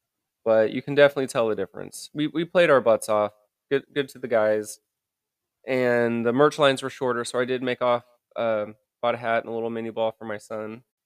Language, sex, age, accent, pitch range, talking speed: English, male, 20-39, American, 110-135 Hz, 220 wpm